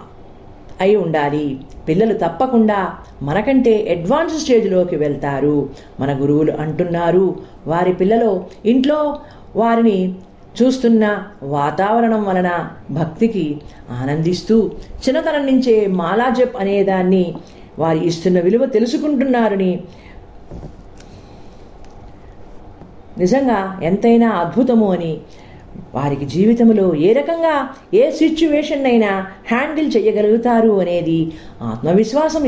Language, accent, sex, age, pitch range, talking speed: Telugu, native, female, 40-59, 145-225 Hz, 80 wpm